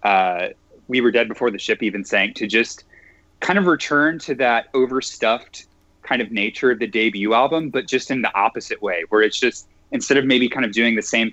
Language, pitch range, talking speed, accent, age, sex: English, 105-150 Hz, 215 wpm, American, 20-39, male